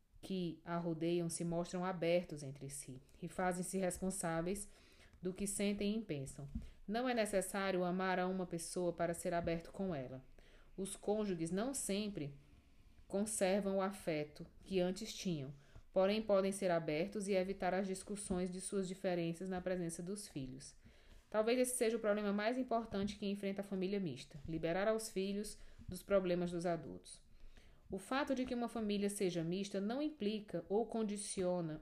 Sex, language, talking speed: female, Portuguese, 160 wpm